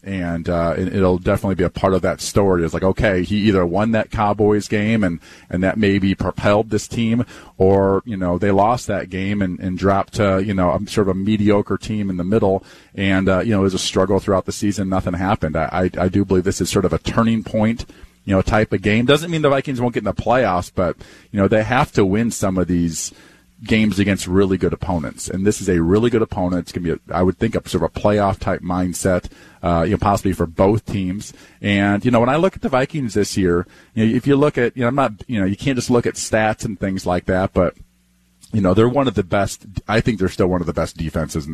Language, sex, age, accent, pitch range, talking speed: English, male, 40-59, American, 90-105 Hz, 265 wpm